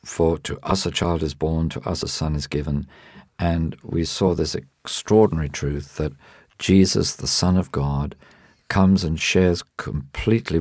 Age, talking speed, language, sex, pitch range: 50-69, 165 wpm, English, male, 70-90 Hz